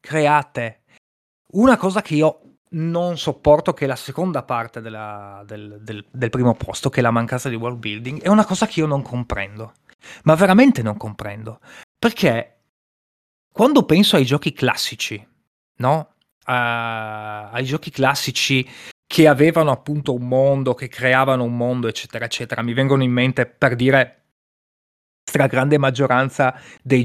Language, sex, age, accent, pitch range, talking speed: Italian, male, 20-39, native, 120-170 Hz, 150 wpm